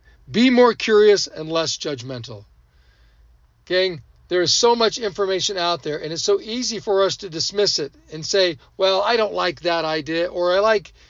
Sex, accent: male, American